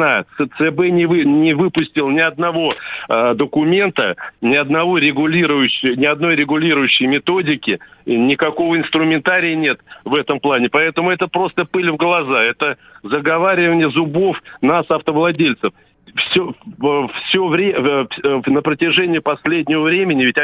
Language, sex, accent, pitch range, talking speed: Russian, male, native, 145-175 Hz, 115 wpm